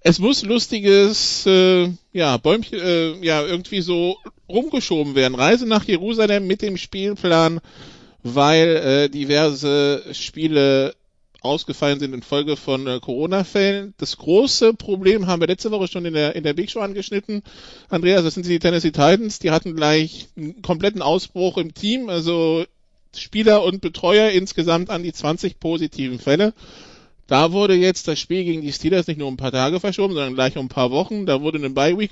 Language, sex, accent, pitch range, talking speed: English, male, German, 150-195 Hz, 170 wpm